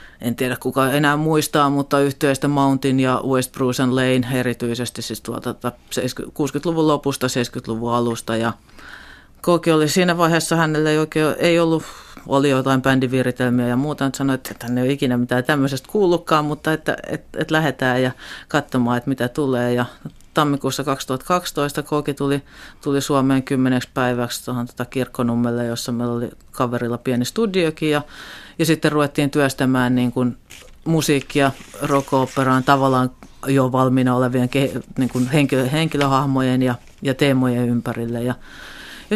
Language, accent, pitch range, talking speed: Finnish, native, 125-150 Hz, 145 wpm